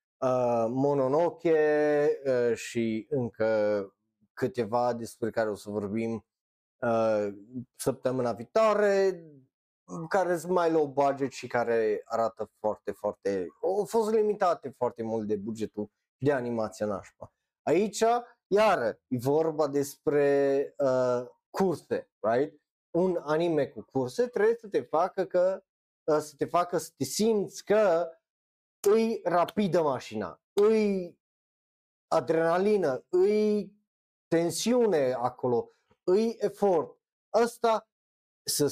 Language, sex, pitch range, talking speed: Romanian, male, 125-200 Hz, 110 wpm